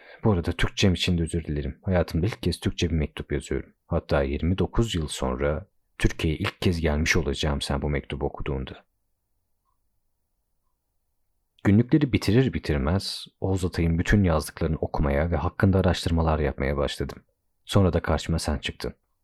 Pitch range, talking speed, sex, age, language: 75-95 Hz, 140 wpm, male, 40-59, Turkish